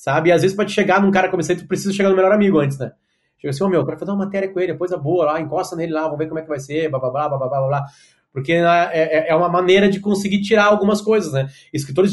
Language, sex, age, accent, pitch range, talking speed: Portuguese, male, 30-49, Brazilian, 150-195 Hz, 295 wpm